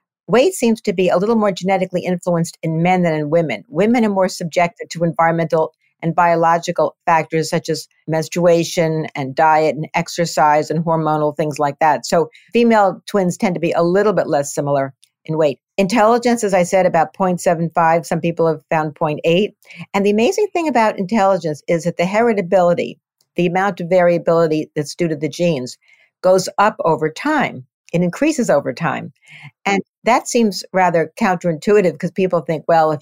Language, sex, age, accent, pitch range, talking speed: English, female, 50-69, American, 160-195 Hz, 175 wpm